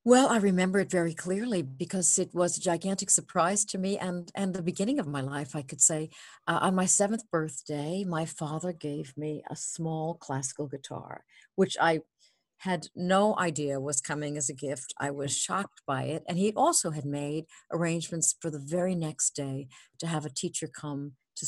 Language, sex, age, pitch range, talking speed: English, female, 60-79, 145-180 Hz, 195 wpm